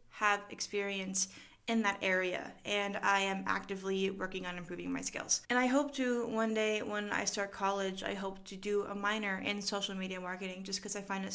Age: 20-39